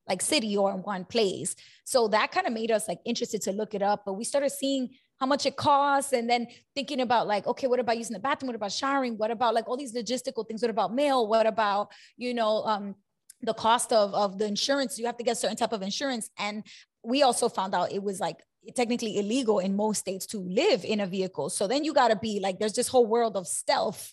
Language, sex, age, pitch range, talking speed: English, female, 20-39, 205-250 Hz, 245 wpm